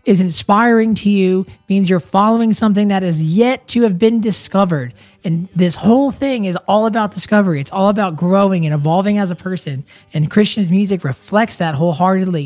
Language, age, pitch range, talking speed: English, 20-39, 150-205 Hz, 185 wpm